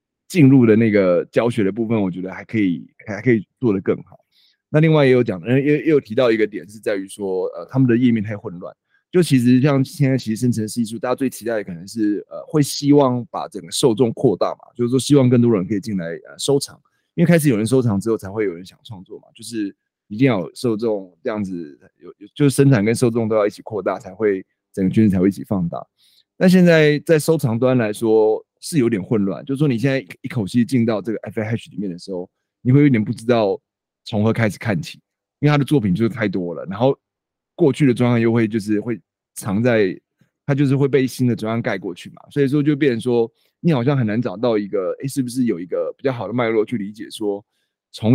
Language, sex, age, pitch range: Chinese, male, 20-39, 105-140 Hz